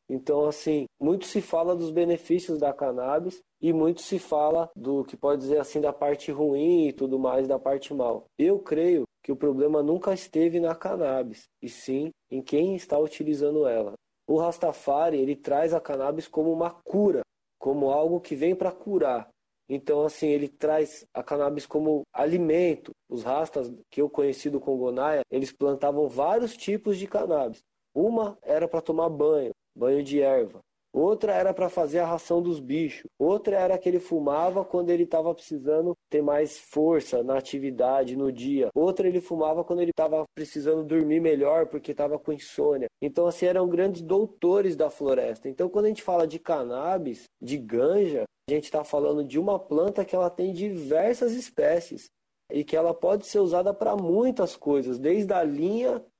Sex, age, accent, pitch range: male, 20-39, Brazilian, 145-180 Hz